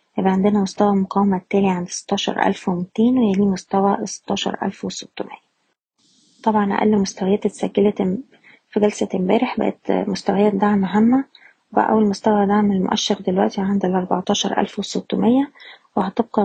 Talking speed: 125 wpm